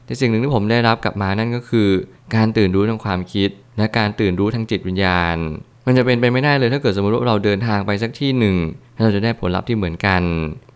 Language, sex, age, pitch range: Thai, male, 20-39, 100-120 Hz